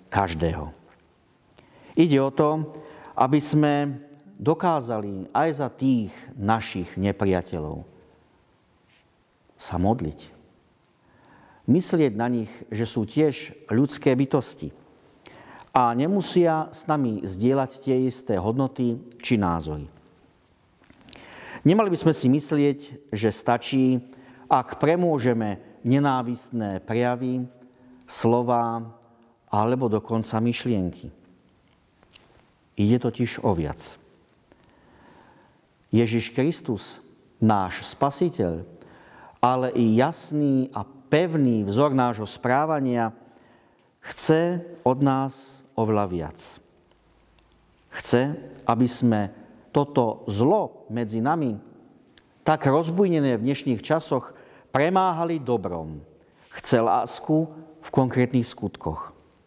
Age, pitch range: 50-69, 110-145 Hz